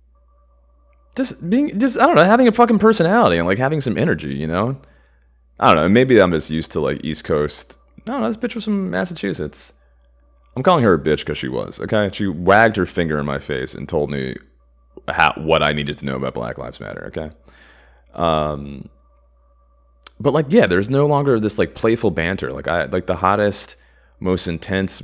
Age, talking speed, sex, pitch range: 30-49, 195 wpm, male, 75-115 Hz